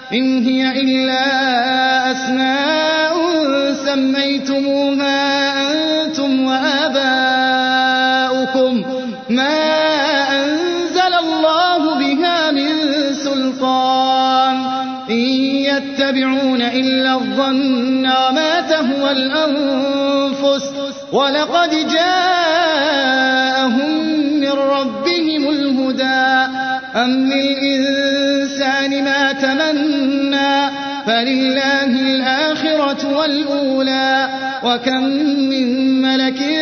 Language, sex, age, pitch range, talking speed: Arabic, male, 30-49, 260-305 Hz, 55 wpm